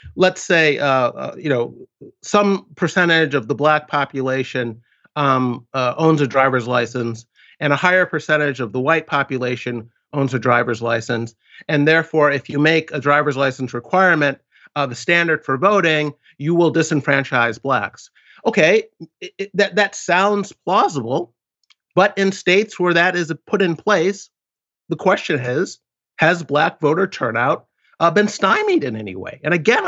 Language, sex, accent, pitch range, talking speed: English, male, American, 135-185 Hz, 160 wpm